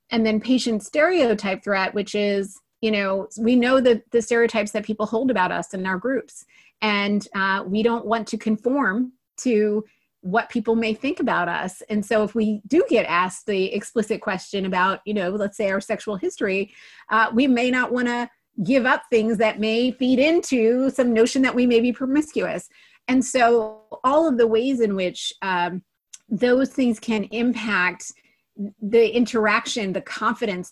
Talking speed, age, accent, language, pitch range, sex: 180 wpm, 30-49, American, English, 195-235 Hz, female